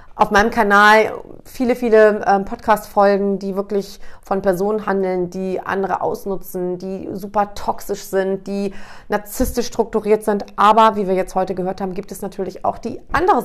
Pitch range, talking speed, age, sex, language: 170-200 Hz, 155 wpm, 40-59, female, German